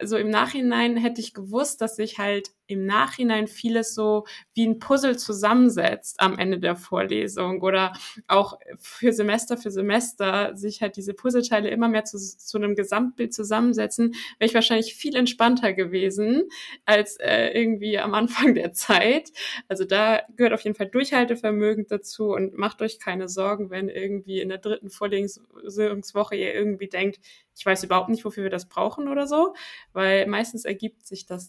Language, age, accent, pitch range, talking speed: German, 20-39, German, 195-230 Hz, 170 wpm